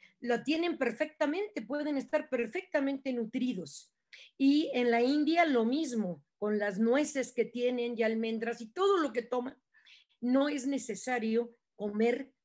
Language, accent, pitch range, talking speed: Spanish, Mexican, 225-285 Hz, 140 wpm